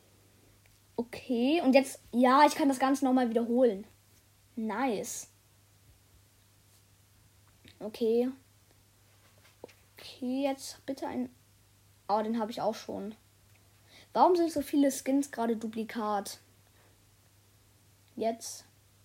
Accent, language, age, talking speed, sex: German, German, 20-39, 95 wpm, female